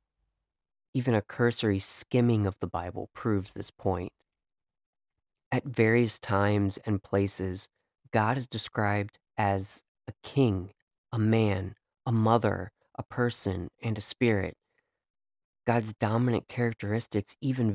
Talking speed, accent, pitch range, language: 115 wpm, American, 100-120 Hz, English